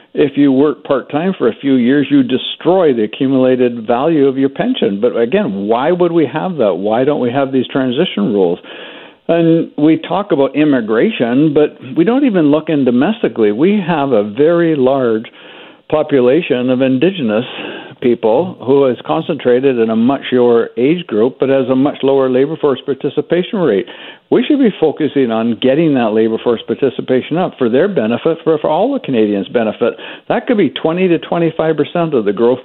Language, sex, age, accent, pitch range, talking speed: English, male, 60-79, American, 120-160 Hz, 180 wpm